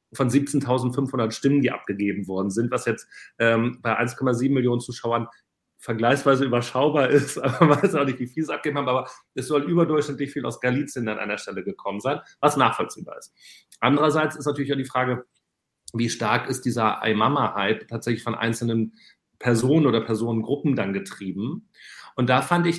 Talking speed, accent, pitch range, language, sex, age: 175 wpm, German, 115-145 Hz, German, male, 40-59